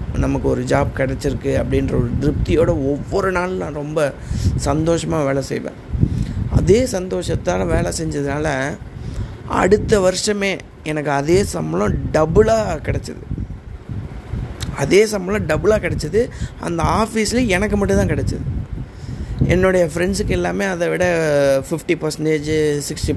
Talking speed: 110 wpm